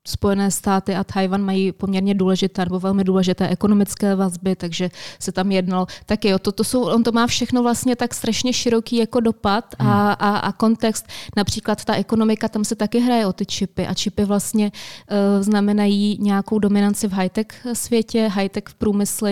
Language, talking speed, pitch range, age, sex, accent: Czech, 170 wpm, 195-220 Hz, 20-39, female, native